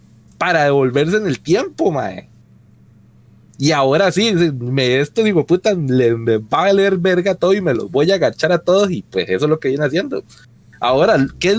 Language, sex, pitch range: Spanish, male, 125-190 Hz